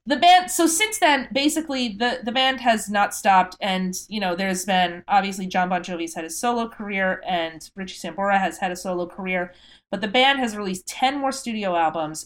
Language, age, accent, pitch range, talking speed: English, 30-49, American, 175-215 Hz, 205 wpm